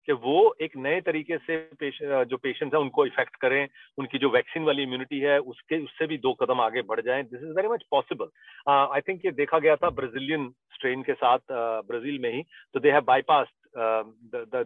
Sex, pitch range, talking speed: male, 135-225 Hz, 225 wpm